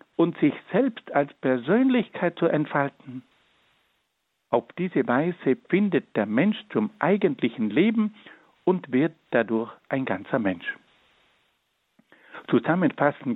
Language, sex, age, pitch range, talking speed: German, male, 60-79, 150-220 Hz, 105 wpm